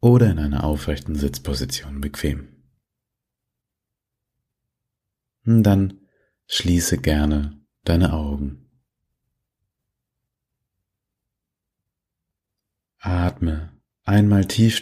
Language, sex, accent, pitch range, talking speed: German, male, German, 80-105 Hz, 60 wpm